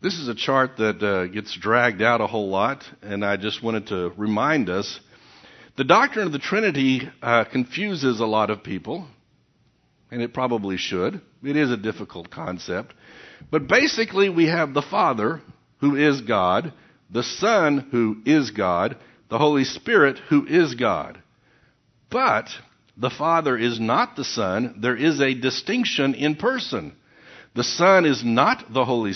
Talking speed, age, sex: 160 wpm, 60-79, male